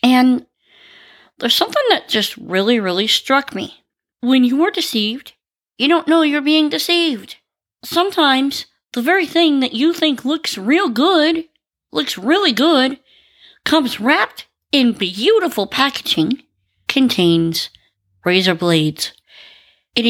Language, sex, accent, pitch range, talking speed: English, female, American, 185-295 Hz, 120 wpm